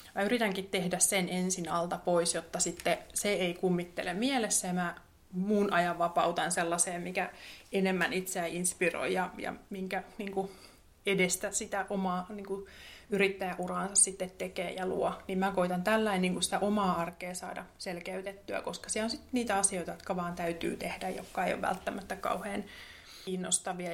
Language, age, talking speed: Finnish, 20-39, 155 wpm